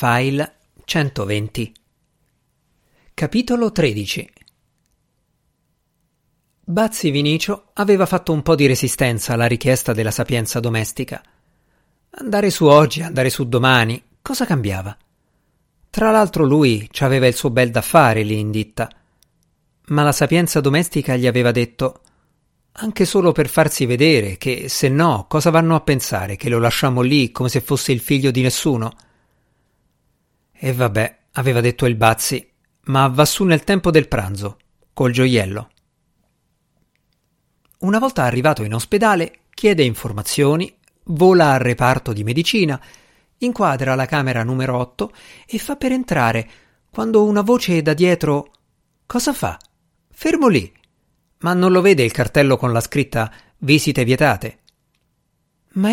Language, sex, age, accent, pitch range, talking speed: Italian, male, 50-69, native, 120-165 Hz, 135 wpm